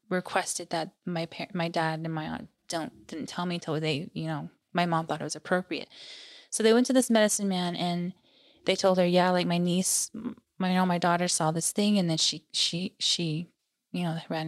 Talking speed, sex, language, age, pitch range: 225 wpm, female, English, 20-39, 160-185 Hz